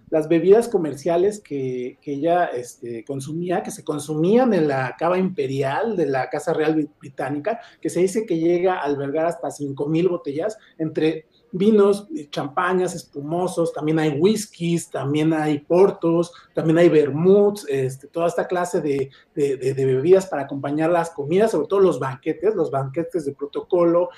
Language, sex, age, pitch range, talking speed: Spanish, male, 40-59, 155-200 Hz, 160 wpm